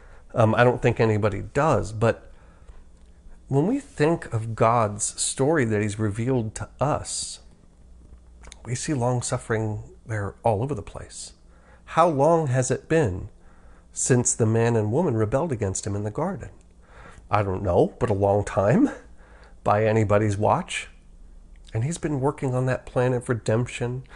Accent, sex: American, male